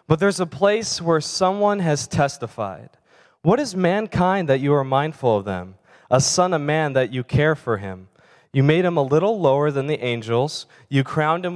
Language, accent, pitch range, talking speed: English, American, 130-175 Hz, 195 wpm